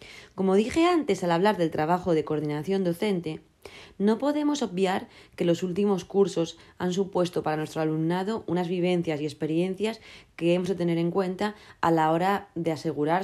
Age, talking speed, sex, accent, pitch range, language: 20-39, 170 wpm, female, Spanish, 155-195 Hz, Spanish